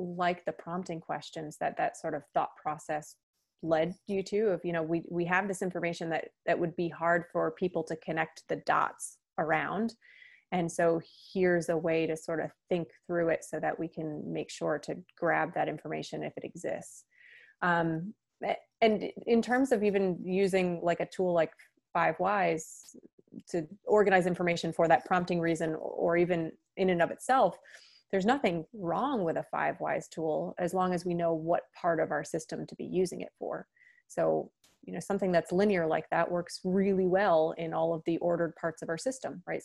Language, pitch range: English, 165-195 Hz